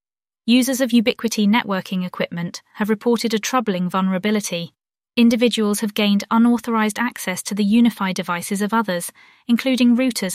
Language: English